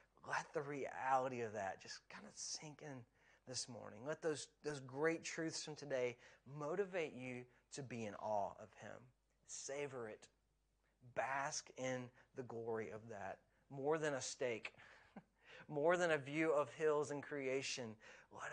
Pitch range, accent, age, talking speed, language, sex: 120-150 Hz, American, 30-49, 155 wpm, English, male